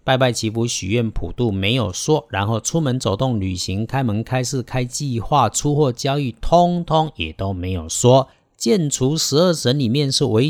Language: Chinese